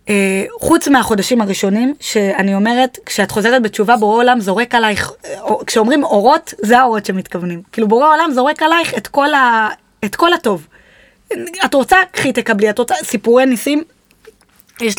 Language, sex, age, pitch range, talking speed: Hebrew, female, 20-39, 215-310 Hz, 155 wpm